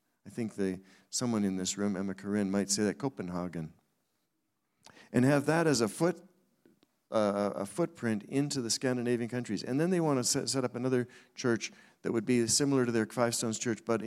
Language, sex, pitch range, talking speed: English, male, 100-130 Hz, 190 wpm